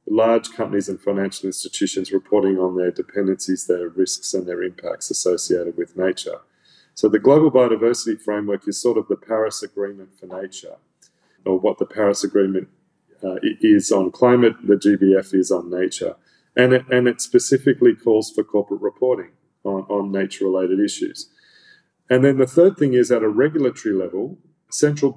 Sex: male